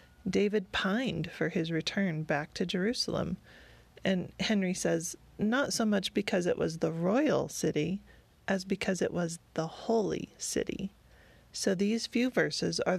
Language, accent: English, American